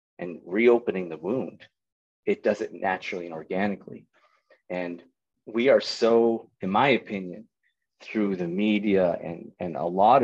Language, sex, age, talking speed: English, male, 30-49, 140 wpm